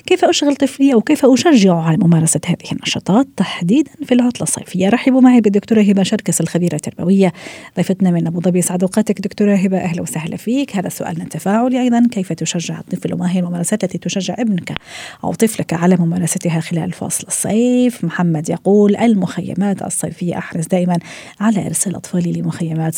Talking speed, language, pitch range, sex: 160 wpm, Arabic, 170-205 Hz, female